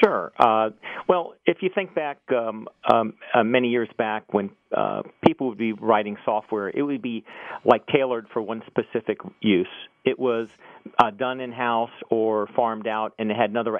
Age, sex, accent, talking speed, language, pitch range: 50-69, male, American, 180 wpm, English, 110-140 Hz